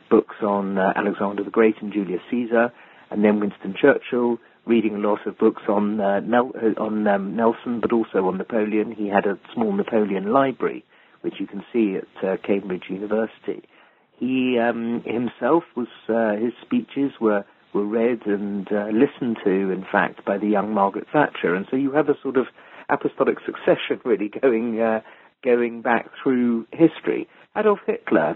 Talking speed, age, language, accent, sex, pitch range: 170 wpm, 50-69, English, British, male, 105-120 Hz